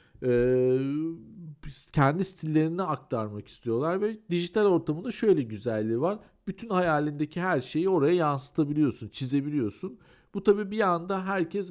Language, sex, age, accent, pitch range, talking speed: Turkish, male, 50-69, native, 130-175 Hz, 120 wpm